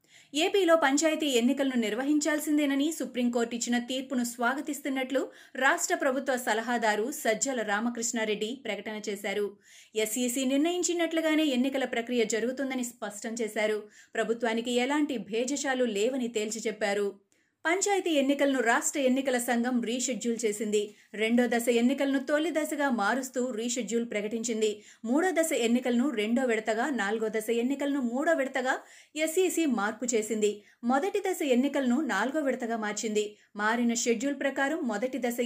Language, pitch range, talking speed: Telugu, 225-275 Hz, 115 wpm